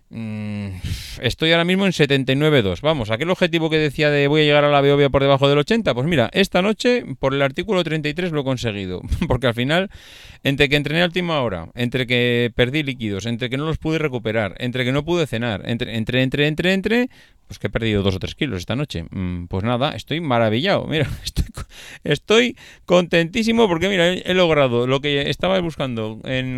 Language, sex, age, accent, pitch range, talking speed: Spanish, male, 30-49, Spanish, 105-145 Hz, 200 wpm